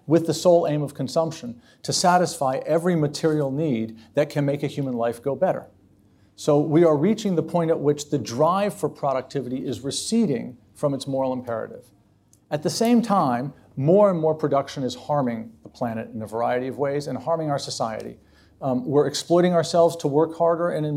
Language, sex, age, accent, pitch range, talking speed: English, male, 50-69, American, 135-170 Hz, 190 wpm